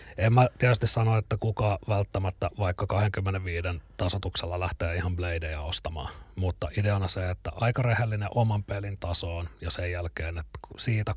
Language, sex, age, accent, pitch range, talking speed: Finnish, male, 30-49, native, 85-105 Hz, 150 wpm